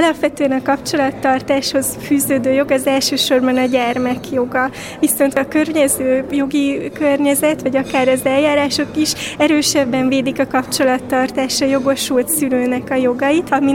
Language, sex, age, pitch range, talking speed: Hungarian, female, 20-39, 265-285 Hz, 125 wpm